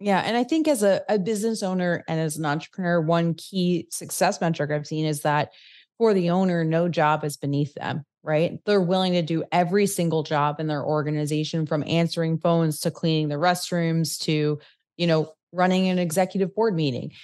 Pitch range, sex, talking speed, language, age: 150-180 Hz, female, 190 wpm, English, 30-49